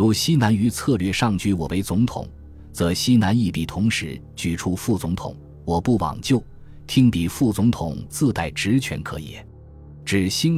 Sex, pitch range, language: male, 85-115 Hz, Chinese